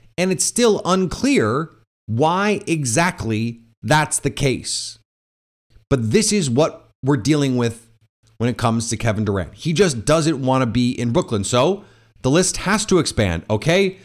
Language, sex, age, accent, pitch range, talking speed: English, male, 30-49, American, 110-165 Hz, 160 wpm